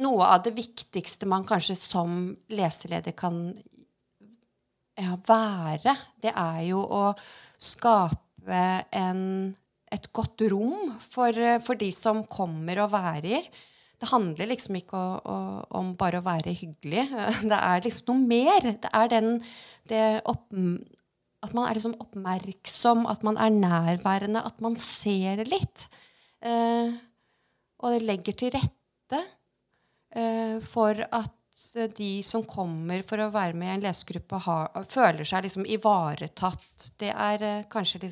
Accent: Swedish